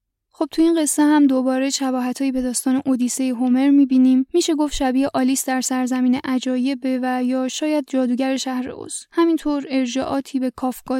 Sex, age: female, 10-29